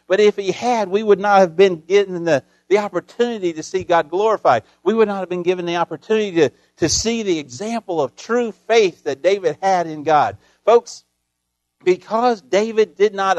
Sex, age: male, 50-69